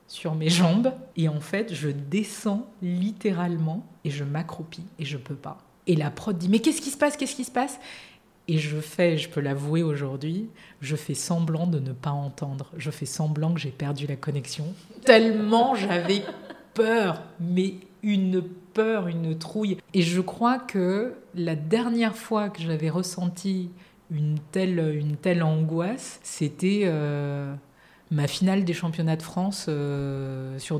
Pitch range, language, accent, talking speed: 155-195 Hz, French, French, 165 wpm